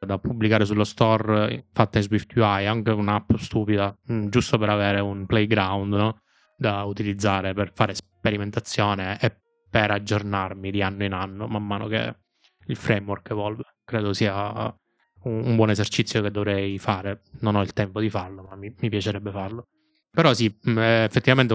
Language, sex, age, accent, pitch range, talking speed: Italian, male, 20-39, native, 100-110 Hz, 160 wpm